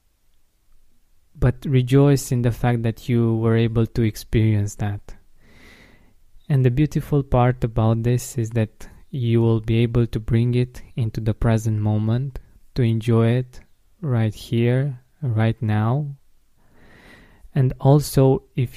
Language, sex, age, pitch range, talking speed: English, male, 20-39, 110-125 Hz, 130 wpm